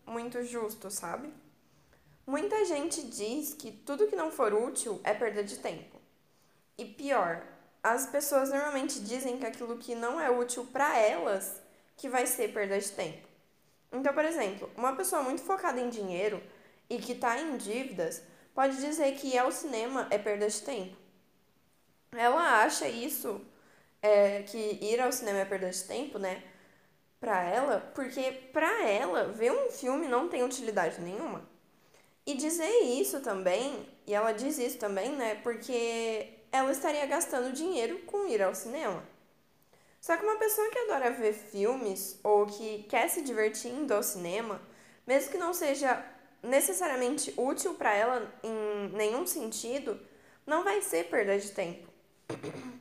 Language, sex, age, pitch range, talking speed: Portuguese, female, 10-29, 210-285 Hz, 155 wpm